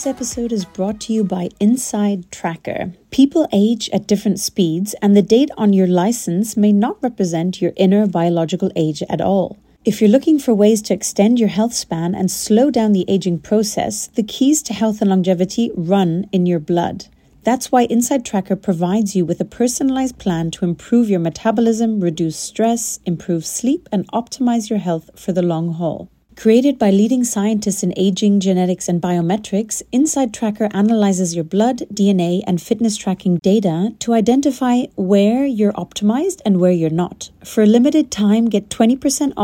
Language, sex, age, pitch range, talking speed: English, female, 30-49, 185-230 Hz, 175 wpm